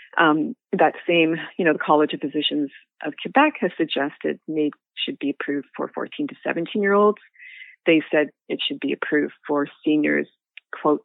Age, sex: 30-49, female